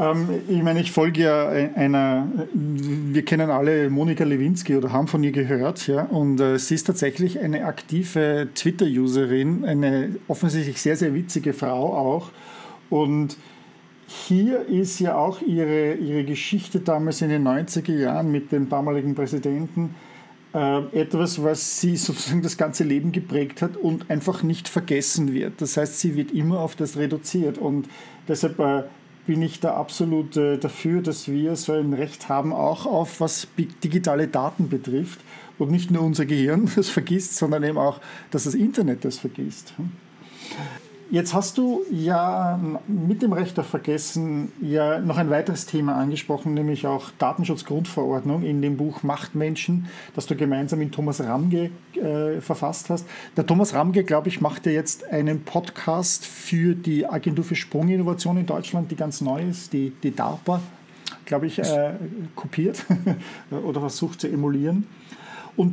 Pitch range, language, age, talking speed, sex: 145-175 Hz, English, 50-69, 155 wpm, male